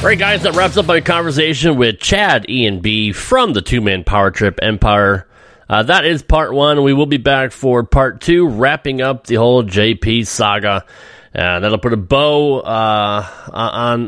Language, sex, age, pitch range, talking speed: English, male, 30-49, 105-160 Hz, 180 wpm